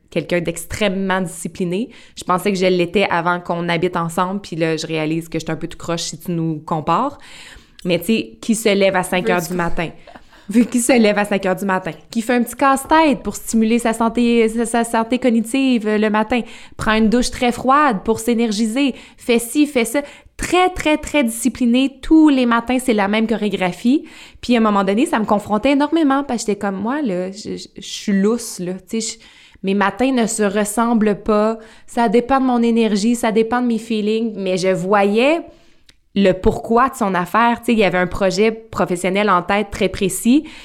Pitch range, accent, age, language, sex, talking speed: 185-235 Hz, Canadian, 20-39, French, female, 205 wpm